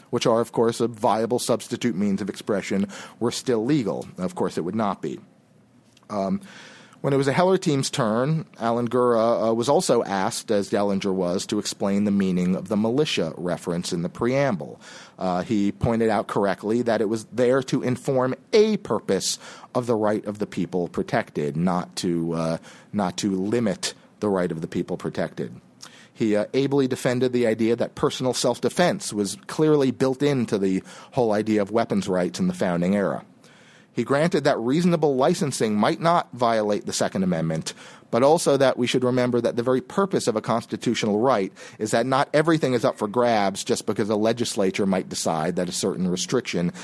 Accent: American